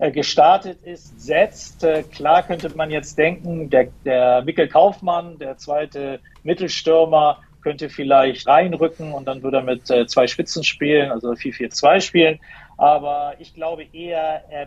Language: German